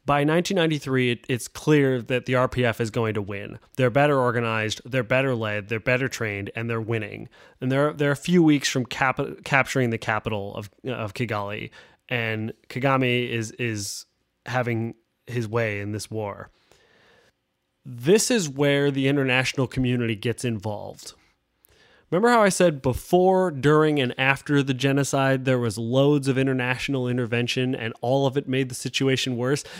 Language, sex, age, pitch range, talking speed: English, male, 20-39, 120-145 Hz, 165 wpm